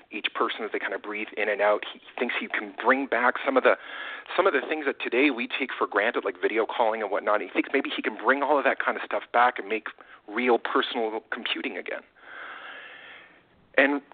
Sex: male